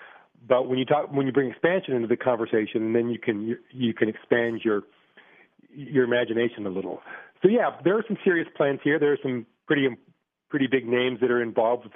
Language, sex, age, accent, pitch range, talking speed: English, male, 40-59, American, 115-145 Hz, 205 wpm